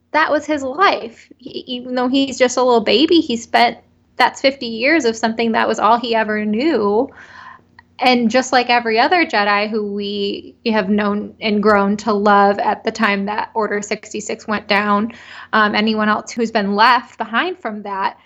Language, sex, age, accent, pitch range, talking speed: English, female, 10-29, American, 205-245 Hz, 180 wpm